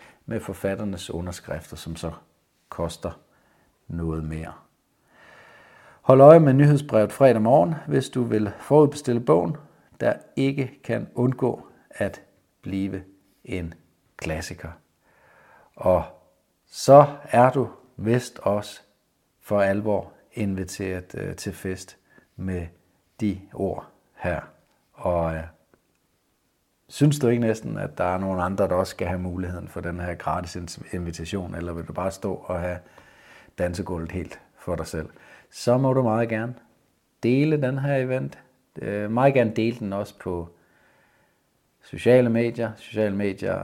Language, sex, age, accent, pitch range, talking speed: Danish, male, 60-79, native, 90-115 Hz, 130 wpm